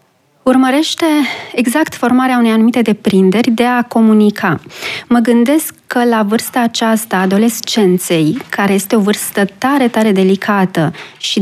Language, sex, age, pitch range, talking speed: Romanian, female, 30-49, 195-240 Hz, 125 wpm